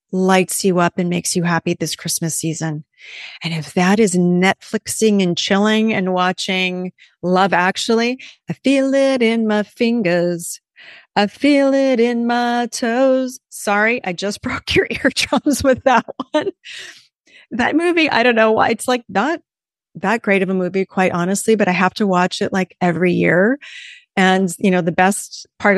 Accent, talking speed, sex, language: American, 170 wpm, female, English